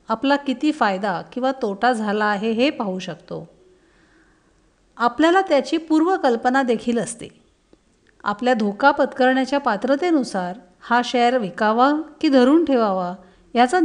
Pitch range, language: 205-275 Hz, Marathi